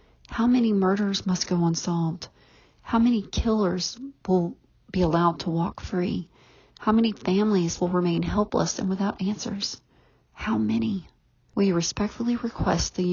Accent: American